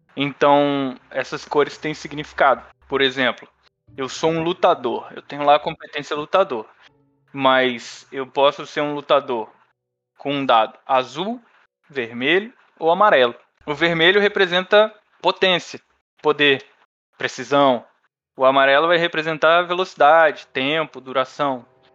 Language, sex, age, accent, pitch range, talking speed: Portuguese, male, 20-39, Brazilian, 135-175 Hz, 120 wpm